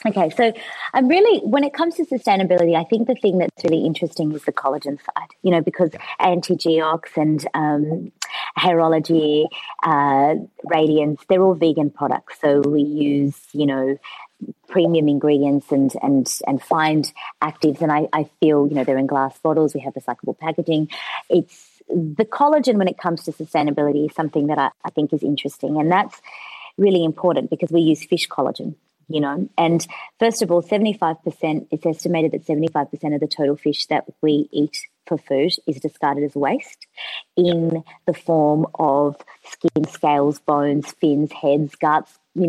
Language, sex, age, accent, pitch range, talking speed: English, female, 30-49, Australian, 145-170 Hz, 170 wpm